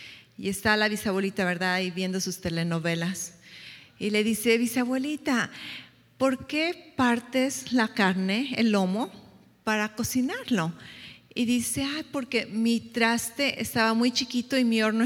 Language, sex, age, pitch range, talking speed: English, female, 40-59, 215-255 Hz, 135 wpm